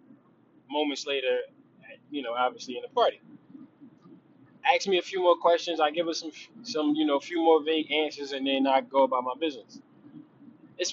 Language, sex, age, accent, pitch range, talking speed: English, male, 20-39, American, 145-210 Hz, 185 wpm